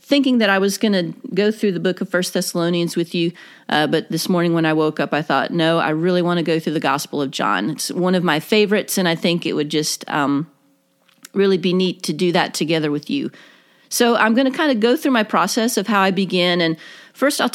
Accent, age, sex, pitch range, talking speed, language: American, 40-59, female, 160-210 Hz, 255 wpm, English